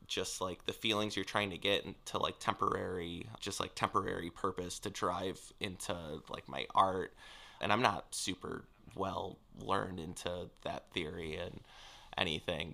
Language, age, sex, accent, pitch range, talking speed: English, 20-39, male, American, 100-115 Hz, 150 wpm